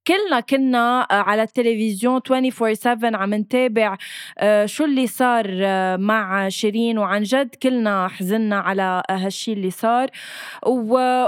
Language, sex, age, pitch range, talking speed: Arabic, female, 20-39, 210-260 Hz, 110 wpm